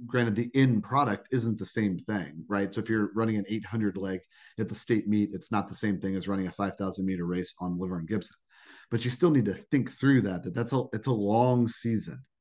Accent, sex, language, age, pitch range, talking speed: American, male, English, 30-49, 95-115 Hz, 240 wpm